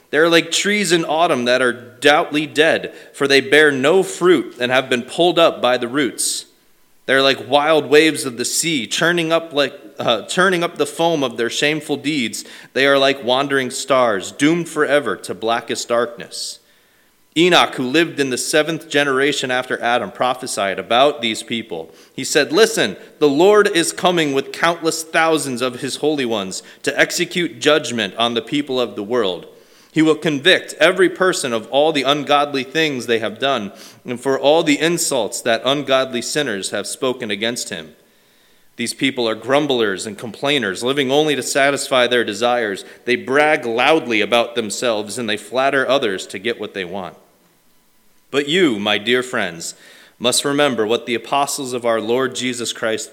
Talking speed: 175 wpm